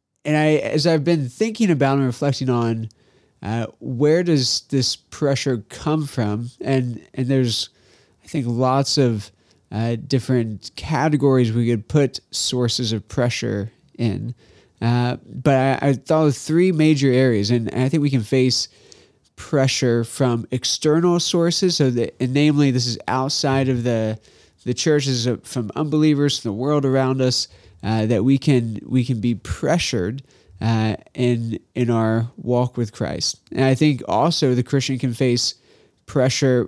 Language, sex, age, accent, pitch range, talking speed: English, male, 30-49, American, 115-145 Hz, 155 wpm